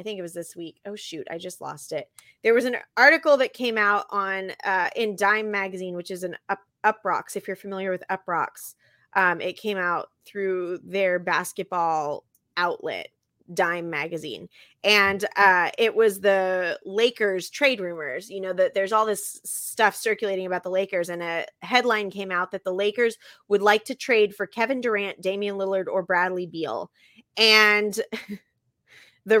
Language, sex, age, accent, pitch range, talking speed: English, female, 20-39, American, 185-220 Hz, 175 wpm